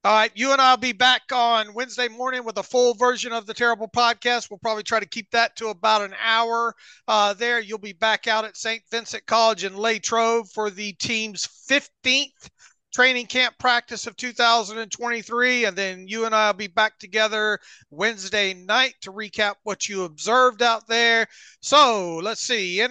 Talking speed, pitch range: 190 wpm, 200-235 Hz